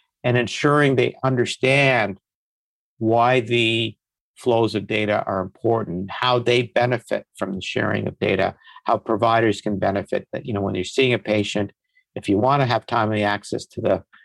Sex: male